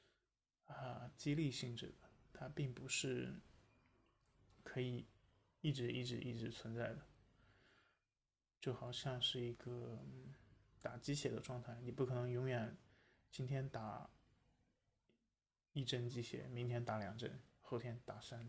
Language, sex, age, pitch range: Chinese, male, 20-39, 110-130 Hz